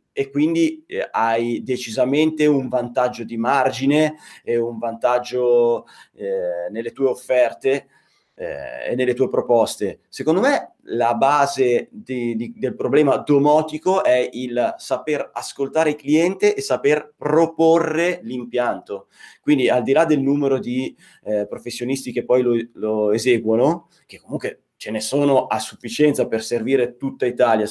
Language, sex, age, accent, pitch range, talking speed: Italian, male, 30-49, native, 120-165 Hz, 135 wpm